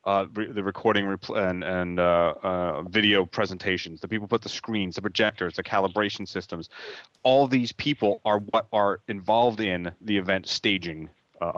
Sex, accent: male, American